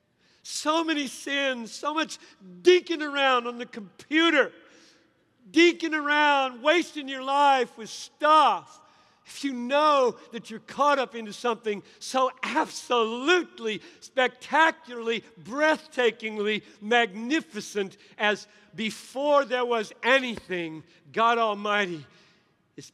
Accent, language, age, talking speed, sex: American, English, 50-69, 100 wpm, male